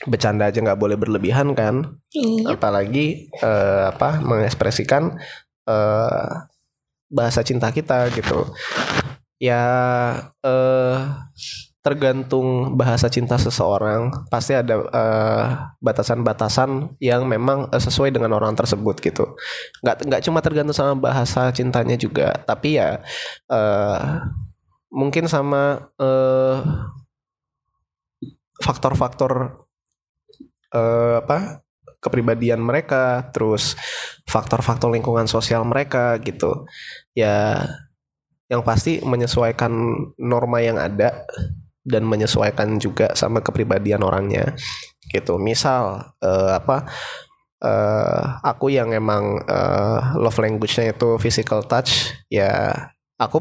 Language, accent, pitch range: Indonesian, native, 110-135 Hz